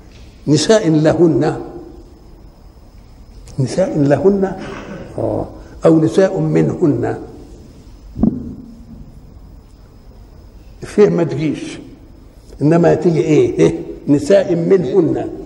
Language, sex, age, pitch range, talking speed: Arabic, male, 60-79, 150-220 Hz, 60 wpm